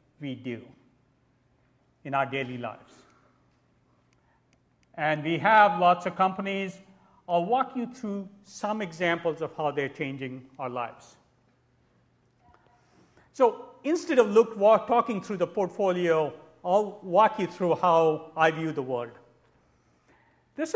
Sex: male